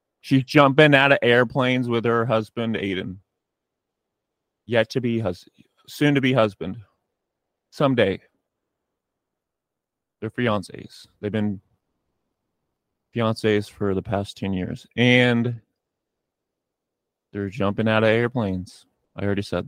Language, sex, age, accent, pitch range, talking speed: English, male, 30-49, American, 100-125 Hz, 110 wpm